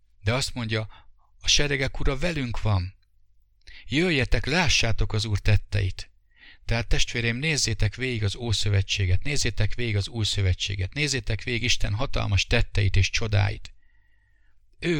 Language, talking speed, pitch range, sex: English, 125 wpm, 95-115 Hz, male